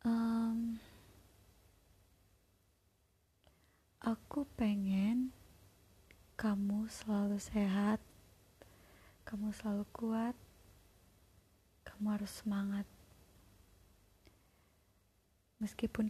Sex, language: female, Indonesian